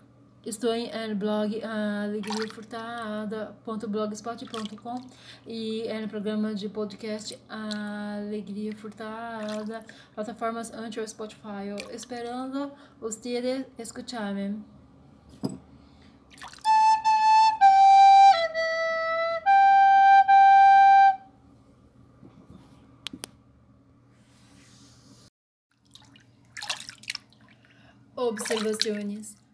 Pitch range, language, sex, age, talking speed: 210-230 Hz, Portuguese, female, 30-49, 45 wpm